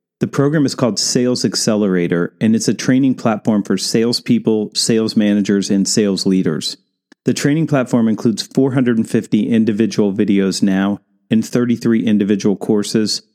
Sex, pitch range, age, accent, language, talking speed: male, 100-120 Hz, 40-59, American, English, 135 wpm